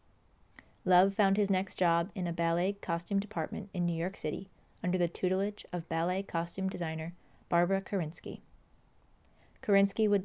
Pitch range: 165-195 Hz